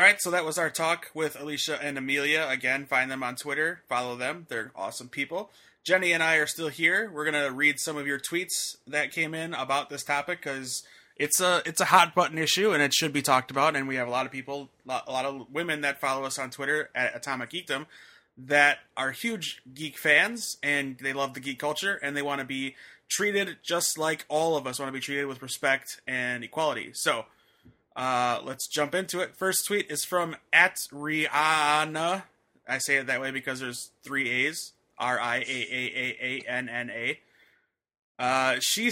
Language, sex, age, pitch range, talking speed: English, male, 20-39, 130-160 Hz, 195 wpm